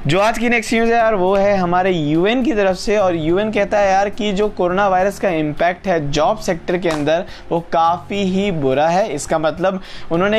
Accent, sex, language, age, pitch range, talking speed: native, male, Hindi, 20-39, 165-205 Hz, 220 wpm